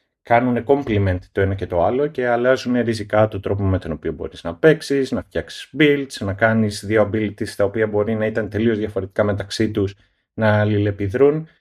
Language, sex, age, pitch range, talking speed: Greek, male, 30-49, 105-130 Hz, 185 wpm